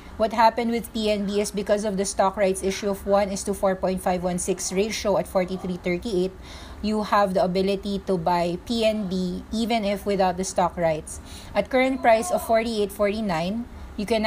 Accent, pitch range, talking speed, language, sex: Filipino, 180-210 Hz, 165 wpm, English, female